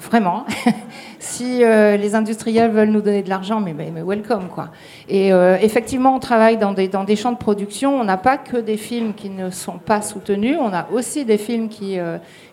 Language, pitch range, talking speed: English, 195-235 Hz, 215 wpm